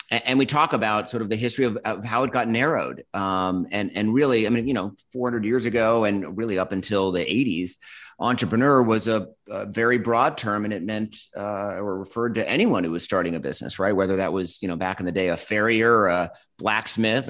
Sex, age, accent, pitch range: male, 30-49, American, 90-115 Hz